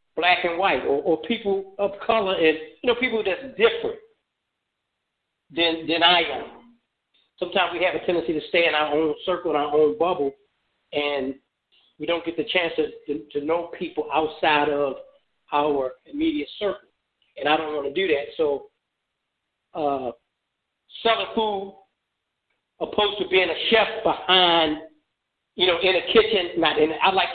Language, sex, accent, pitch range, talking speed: English, male, American, 155-215 Hz, 165 wpm